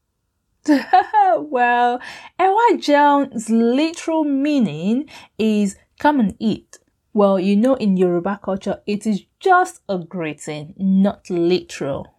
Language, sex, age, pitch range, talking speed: English, female, 20-39, 185-270 Hz, 110 wpm